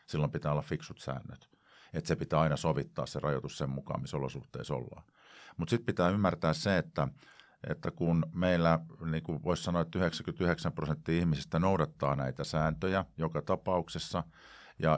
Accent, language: native, Finnish